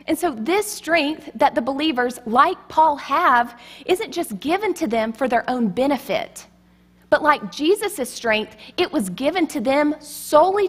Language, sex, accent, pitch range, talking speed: English, female, American, 225-315 Hz, 165 wpm